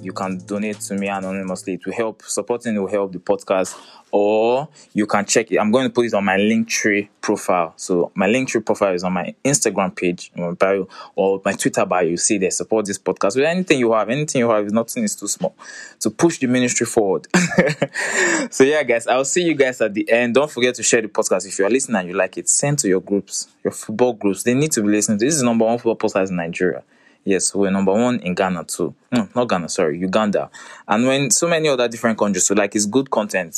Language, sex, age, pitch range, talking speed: English, male, 20-39, 95-120 Hz, 240 wpm